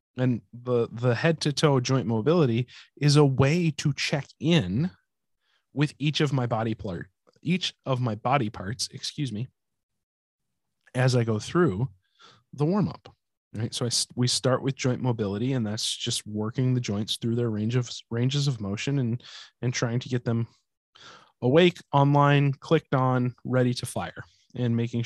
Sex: male